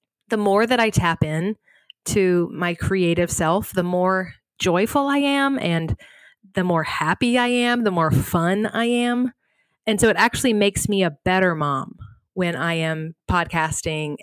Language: English